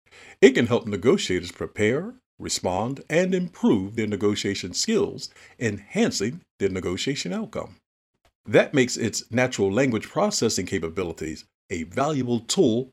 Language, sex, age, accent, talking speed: English, male, 50-69, American, 115 wpm